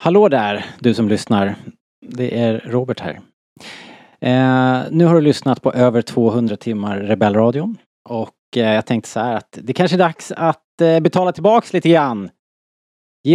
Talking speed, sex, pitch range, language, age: 165 wpm, male, 110-160 Hz, Swedish, 30-49